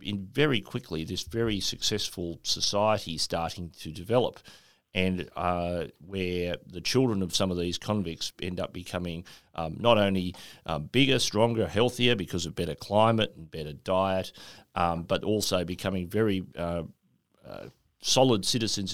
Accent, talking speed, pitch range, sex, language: Australian, 145 wpm, 85-105 Hz, male, English